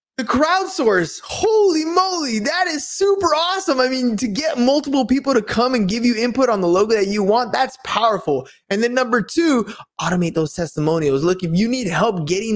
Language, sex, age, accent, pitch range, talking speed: English, male, 20-39, American, 170-220 Hz, 190 wpm